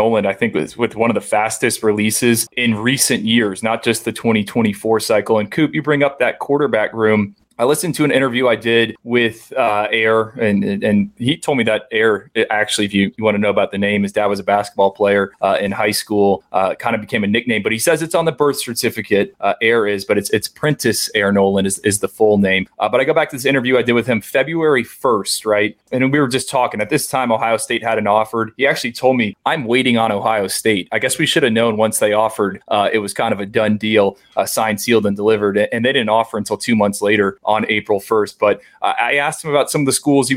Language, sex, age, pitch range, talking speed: English, male, 20-39, 105-120 Hz, 255 wpm